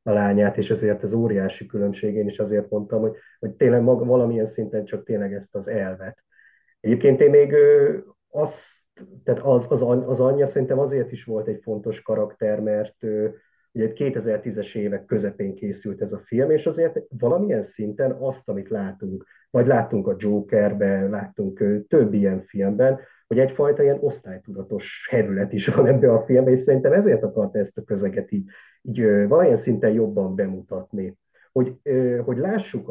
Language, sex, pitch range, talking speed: Hungarian, male, 105-140 Hz, 160 wpm